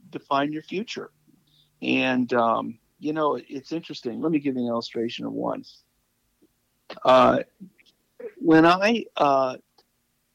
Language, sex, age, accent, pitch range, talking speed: English, male, 50-69, American, 115-175 Hz, 120 wpm